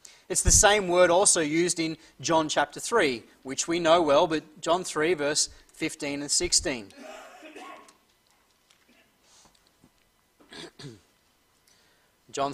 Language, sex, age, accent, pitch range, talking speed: English, male, 30-49, Australian, 155-195 Hz, 105 wpm